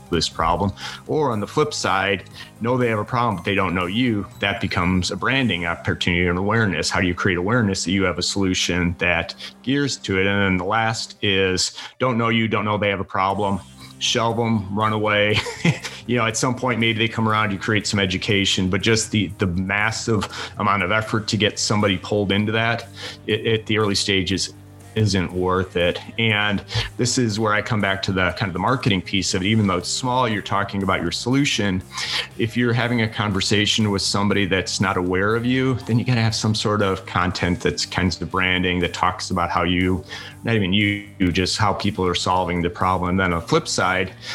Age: 30-49